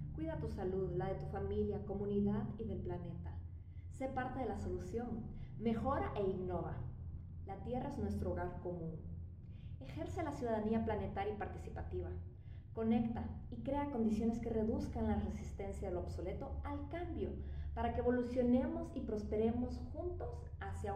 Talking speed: 145 wpm